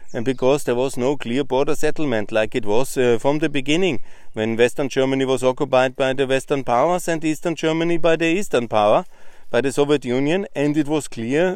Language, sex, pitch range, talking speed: German, male, 115-145 Hz, 205 wpm